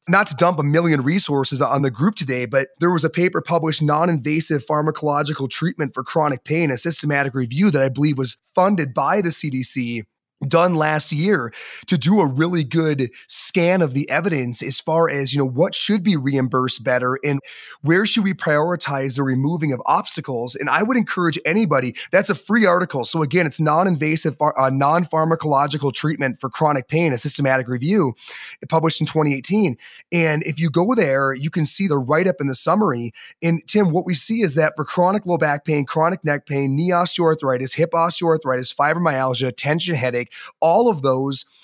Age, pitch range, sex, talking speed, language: 30-49, 140-175 Hz, male, 185 wpm, English